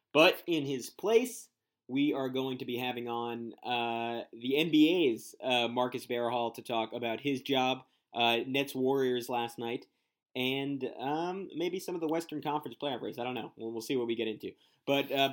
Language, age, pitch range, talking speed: English, 20-39, 120-135 Hz, 190 wpm